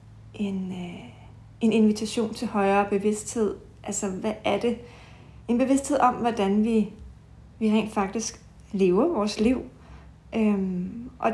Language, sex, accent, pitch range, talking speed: Danish, female, native, 200-230 Hz, 115 wpm